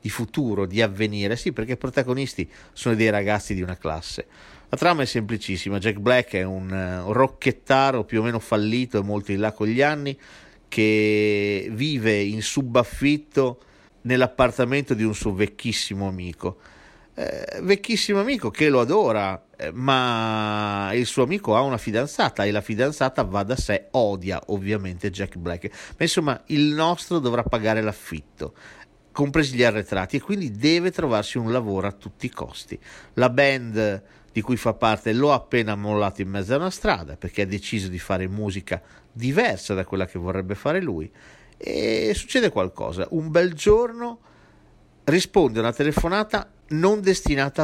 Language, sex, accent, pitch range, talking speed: Italian, male, native, 100-140 Hz, 160 wpm